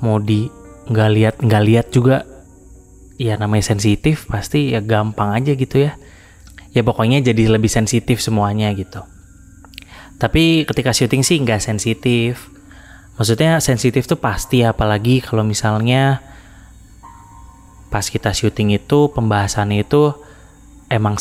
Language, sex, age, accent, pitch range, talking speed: Indonesian, male, 20-39, native, 100-125 Hz, 125 wpm